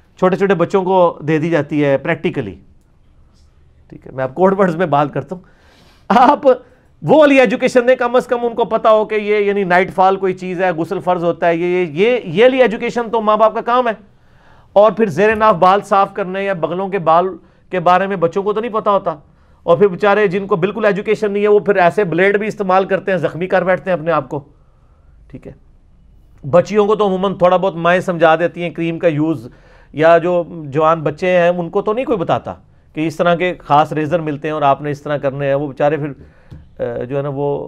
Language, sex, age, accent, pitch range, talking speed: English, male, 40-59, Indian, 155-200 Hz, 165 wpm